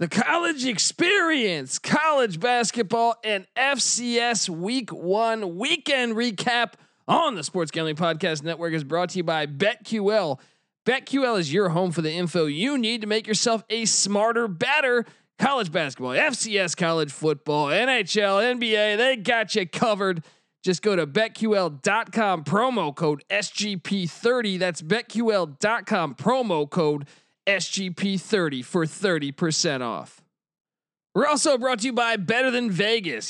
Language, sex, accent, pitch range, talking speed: English, male, American, 165-230 Hz, 135 wpm